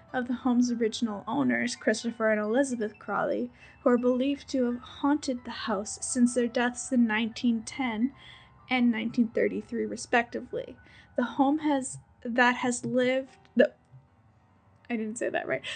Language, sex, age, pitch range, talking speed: English, female, 10-29, 220-255 Hz, 140 wpm